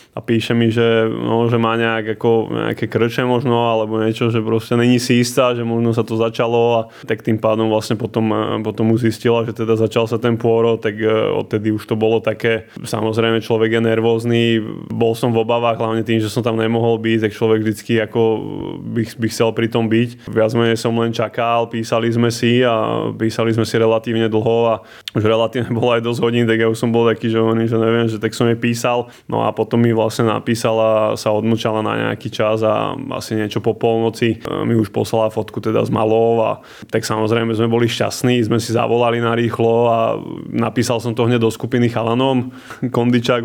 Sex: male